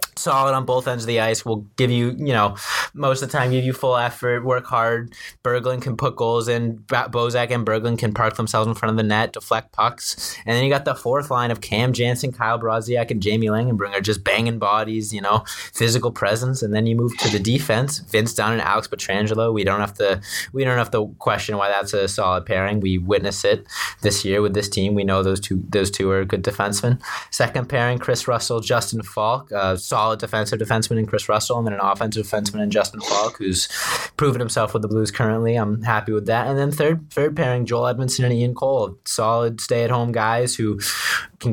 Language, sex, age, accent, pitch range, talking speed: English, male, 20-39, American, 105-125 Hz, 225 wpm